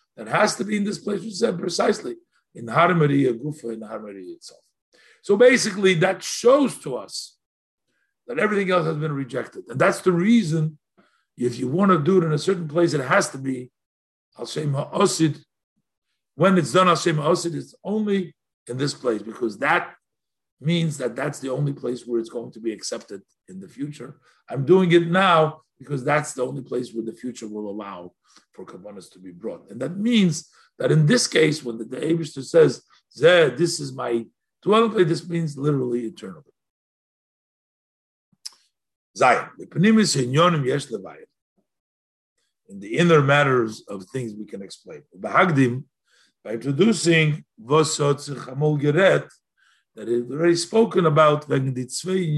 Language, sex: English, male